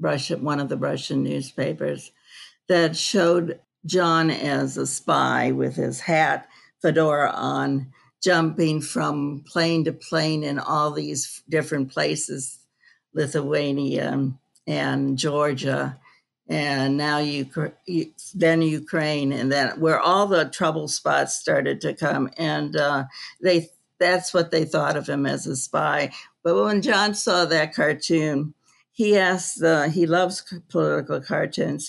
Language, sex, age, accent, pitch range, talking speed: English, female, 60-79, American, 145-175 Hz, 130 wpm